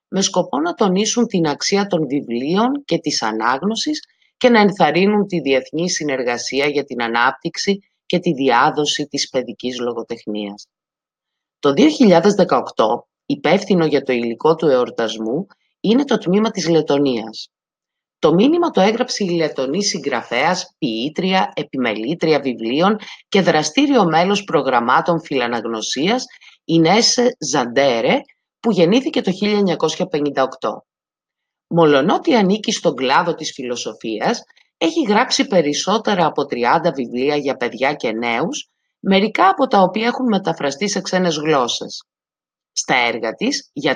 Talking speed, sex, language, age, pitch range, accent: 120 wpm, female, Greek, 30-49, 140-215 Hz, native